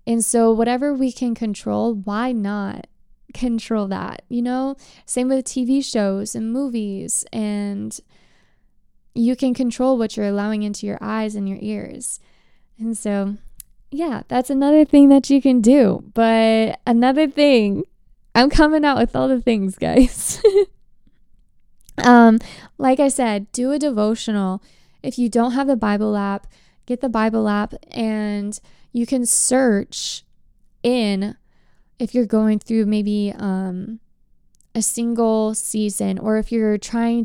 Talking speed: 140 wpm